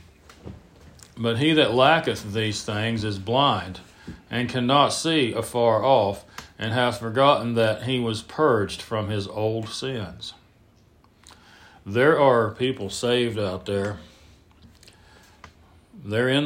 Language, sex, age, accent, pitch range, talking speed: English, male, 40-59, American, 90-115 Hz, 115 wpm